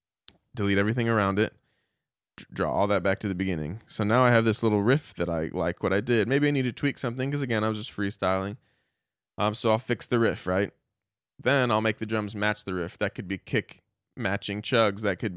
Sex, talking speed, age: male, 225 wpm, 20-39